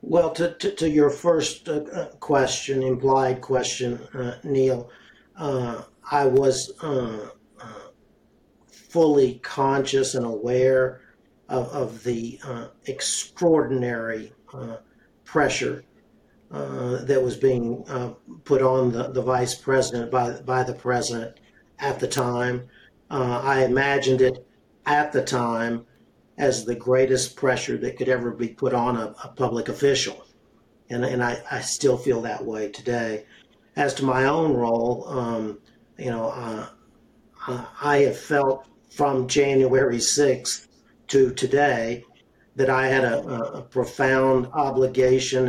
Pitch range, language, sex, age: 120-135 Hz, English, male, 50-69